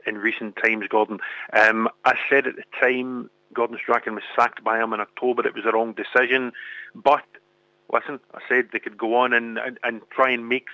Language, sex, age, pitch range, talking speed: English, male, 40-59, 120-130 Hz, 205 wpm